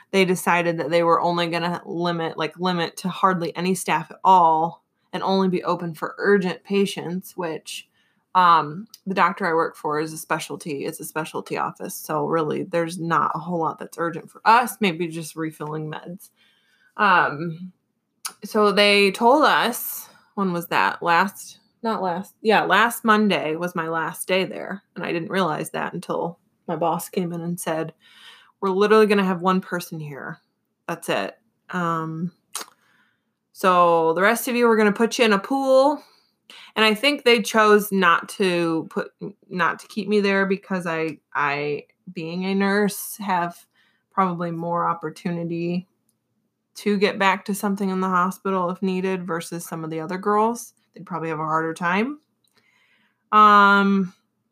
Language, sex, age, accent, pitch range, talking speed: English, female, 20-39, American, 170-200 Hz, 170 wpm